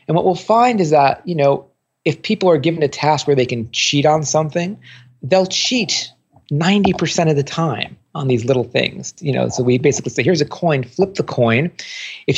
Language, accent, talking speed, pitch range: English, American, 210 wpm, 125-170 Hz